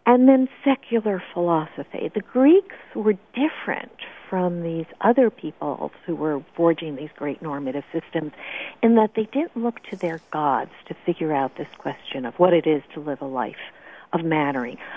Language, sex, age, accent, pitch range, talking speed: English, female, 60-79, American, 170-250 Hz, 170 wpm